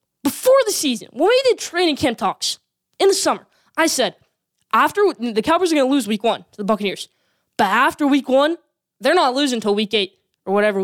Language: English